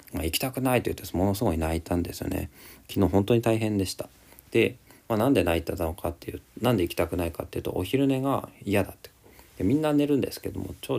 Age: 40-59